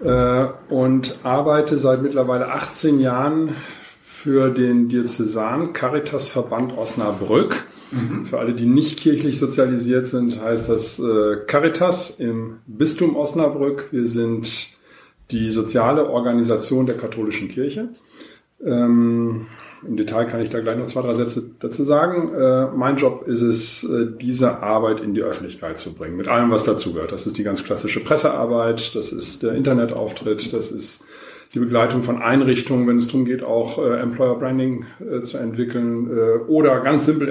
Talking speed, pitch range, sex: 140 wpm, 115-140 Hz, male